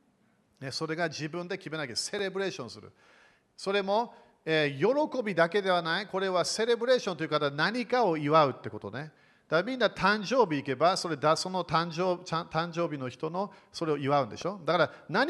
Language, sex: Japanese, male